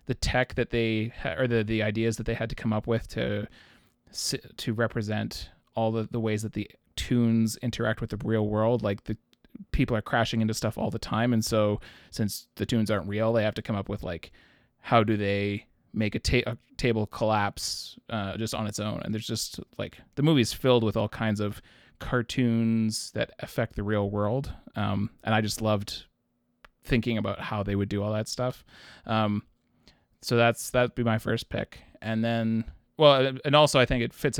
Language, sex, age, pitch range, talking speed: English, male, 20-39, 105-120 Hz, 200 wpm